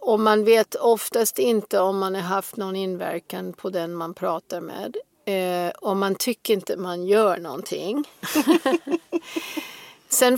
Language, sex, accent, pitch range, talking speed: English, female, Swedish, 190-240 Hz, 145 wpm